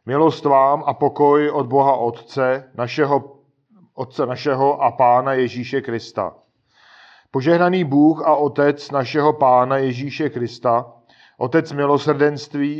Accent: native